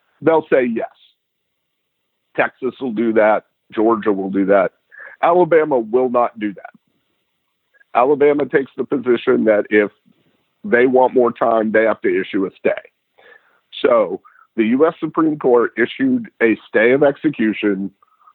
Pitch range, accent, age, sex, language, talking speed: 110-160 Hz, American, 50-69, male, English, 135 wpm